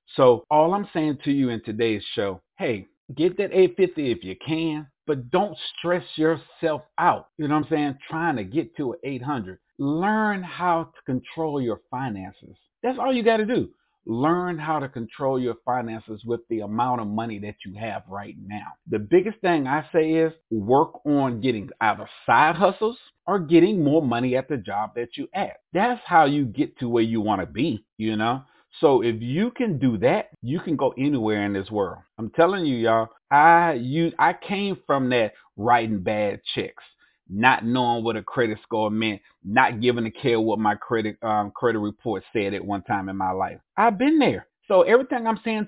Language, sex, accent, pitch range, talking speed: English, male, American, 110-170 Hz, 200 wpm